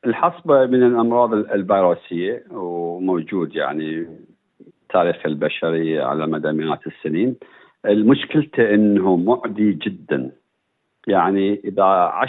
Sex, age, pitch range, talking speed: male, 50-69, 100-125 Hz, 90 wpm